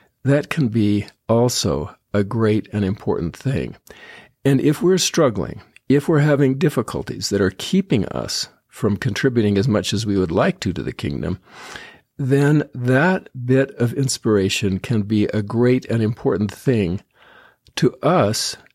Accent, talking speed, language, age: American, 150 wpm, English, 50-69